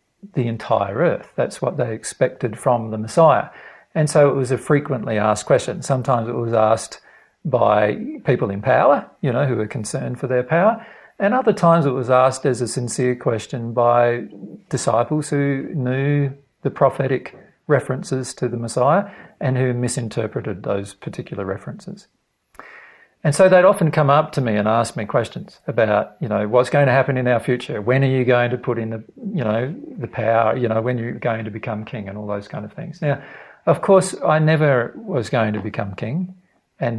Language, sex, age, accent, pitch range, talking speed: English, male, 50-69, Australian, 115-150 Hz, 195 wpm